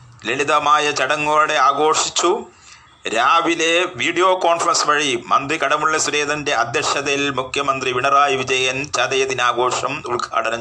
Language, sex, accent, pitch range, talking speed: Malayalam, male, native, 125-155 Hz, 90 wpm